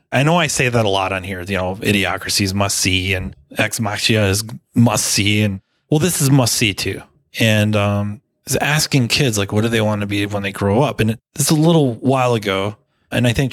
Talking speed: 235 wpm